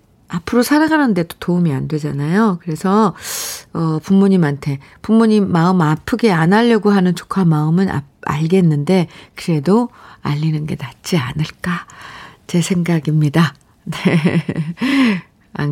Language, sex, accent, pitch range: Korean, female, native, 155-210 Hz